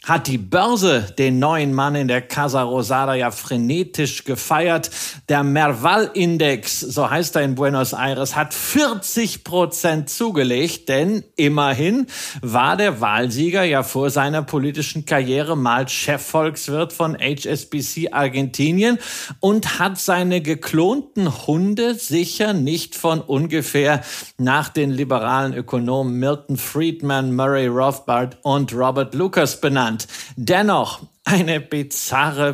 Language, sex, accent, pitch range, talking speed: German, male, German, 135-170 Hz, 115 wpm